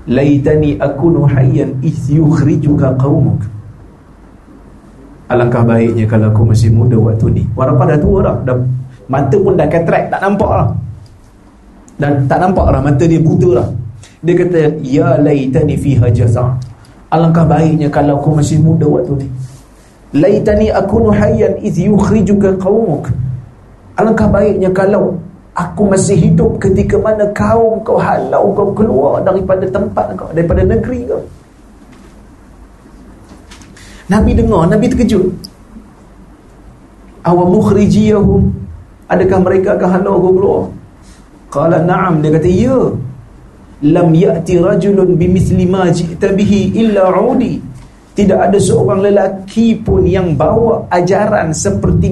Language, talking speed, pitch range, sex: Malay, 120 wpm, 130-195 Hz, male